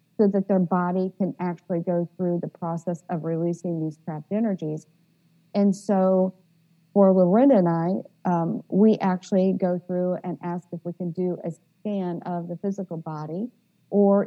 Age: 50-69